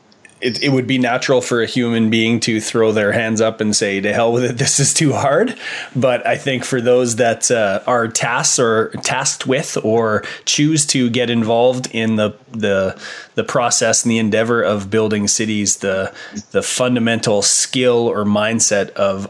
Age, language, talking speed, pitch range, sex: 20-39, English, 185 wpm, 100-120 Hz, male